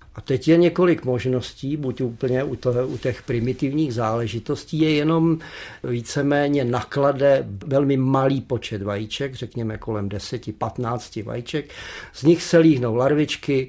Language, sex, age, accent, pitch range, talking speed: Czech, male, 50-69, native, 120-145 Hz, 130 wpm